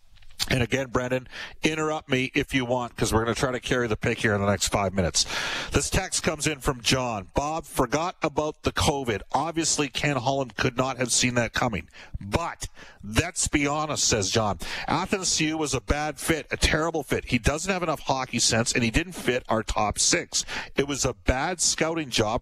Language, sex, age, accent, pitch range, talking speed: English, male, 50-69, American, 115-140 Hz, 205 wpm